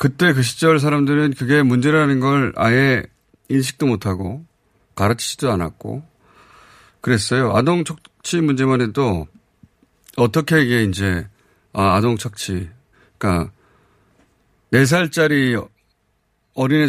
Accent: native